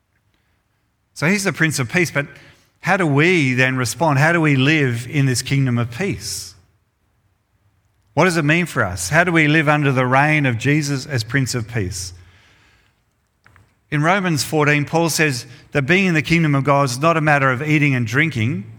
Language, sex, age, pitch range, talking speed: English, male, 50-69, 105-140 Hz, 190 wpm